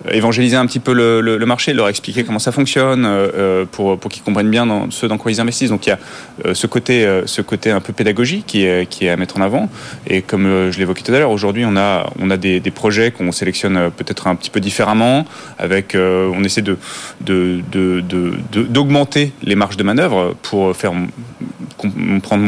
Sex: male